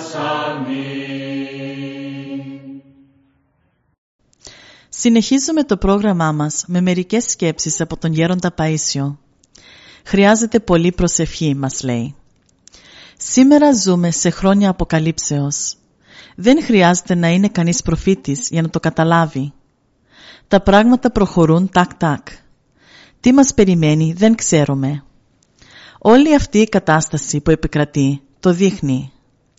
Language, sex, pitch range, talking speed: Greek, female, 145-200 Hz, 95 wpm